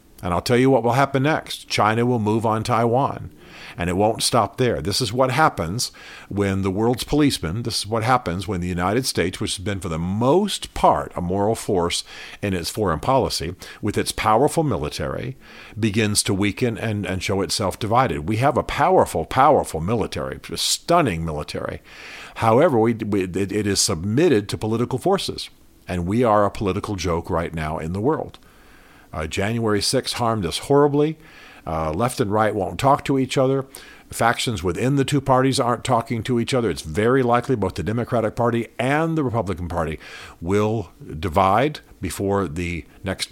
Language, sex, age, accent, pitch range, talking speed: English, male, 50-69, American, 95-125 Hz, 180 wpm